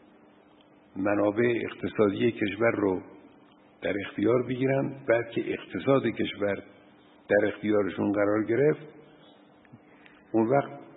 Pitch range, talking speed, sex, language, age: 105-140 Hz, 95 wpm, male, Persian, 60-79